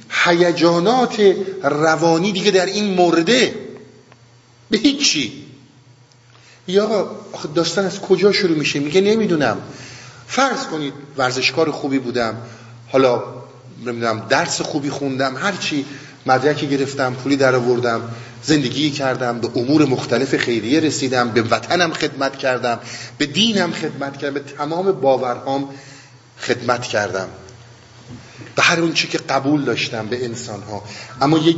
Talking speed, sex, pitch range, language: 120 wpm, male, 120-160 Hz, Persian